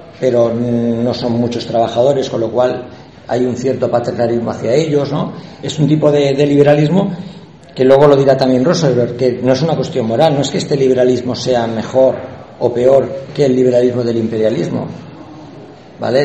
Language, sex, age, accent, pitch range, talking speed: Spanish, male, 50-69, Spanish, 115-150 Hz, 175 wpm